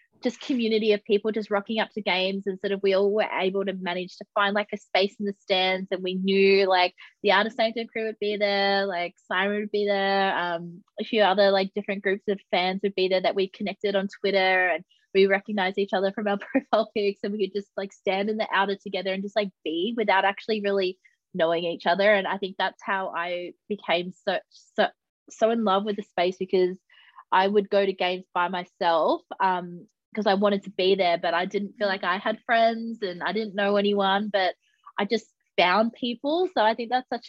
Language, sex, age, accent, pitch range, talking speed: English, female, 20-39, Australian, 185-210 Hz, 225 wpm